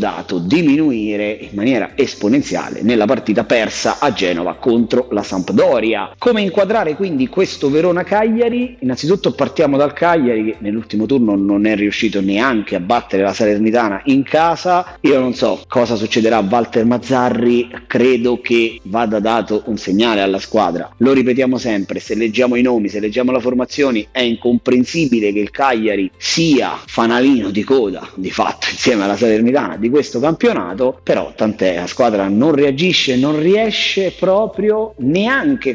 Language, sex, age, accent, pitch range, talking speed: Italian, male, 30-49, native, 110-165 Hz, 150 wpm